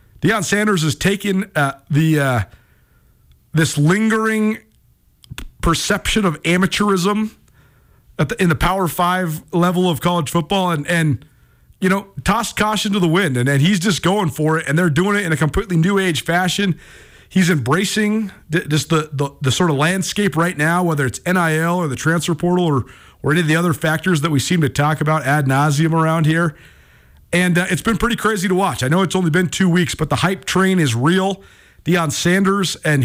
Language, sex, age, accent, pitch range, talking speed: English, male, 40-59, American, 150-185 Hz, 195 wpm